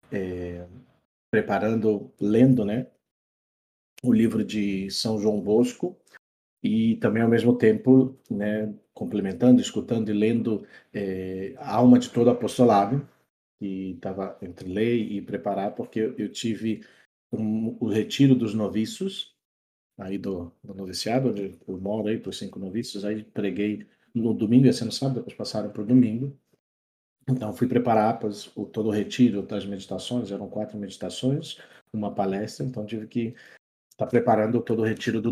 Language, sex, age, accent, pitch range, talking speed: Portuguese, male, 40-59, Brazilian, 100-125 Hz, 150 wpm